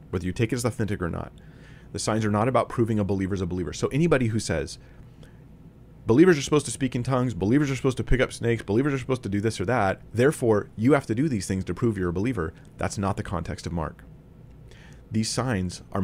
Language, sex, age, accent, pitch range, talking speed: English, male, 30-49, American, 95-130 Hz, 245 wpm